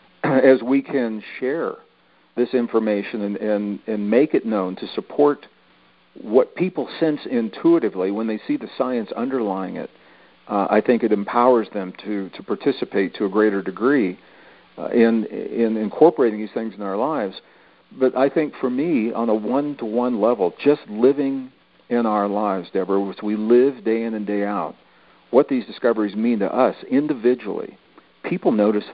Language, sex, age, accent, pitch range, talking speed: English, male, 50-69, American, 105-125 Hz, 165 wpm